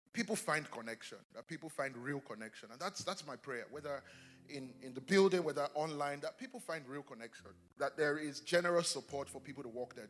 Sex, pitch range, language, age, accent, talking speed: male, 130-165 Hz, English, 30-49, Nigerian, 210 wpm